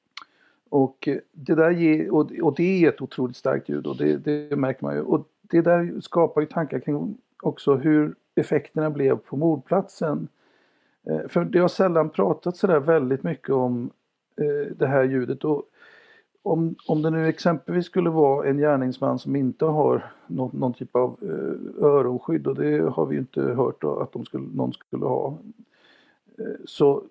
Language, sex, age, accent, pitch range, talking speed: Swedish, male, 60-79, native, 130-170 Hz, 165 wpm